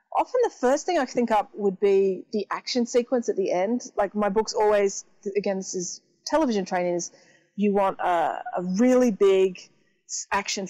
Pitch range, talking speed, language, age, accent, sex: 185-225 Hz, 180 wpm, English, 30-49, Australian, female